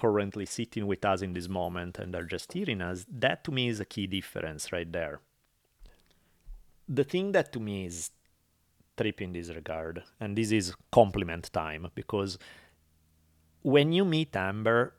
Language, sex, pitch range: English, male, 90-130 Hz